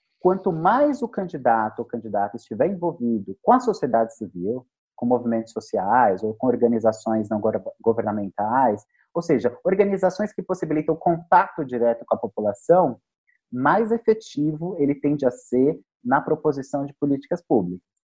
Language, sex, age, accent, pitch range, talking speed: Portuguese, male, 30-49, Brazilian, 125-190 Hz, 145 wpm